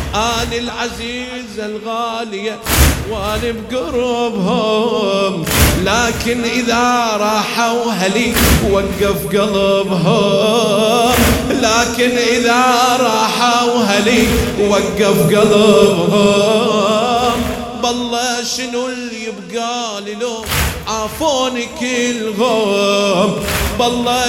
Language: English